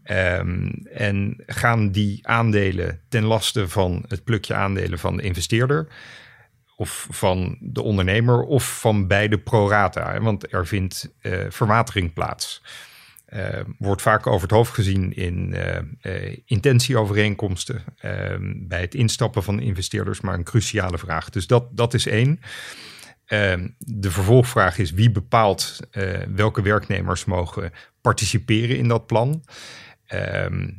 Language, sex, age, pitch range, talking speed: Dutch, male, 50-69, 95-115 Hz, 135 wpm